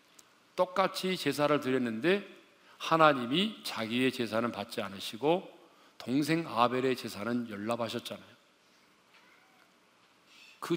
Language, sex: Korean, male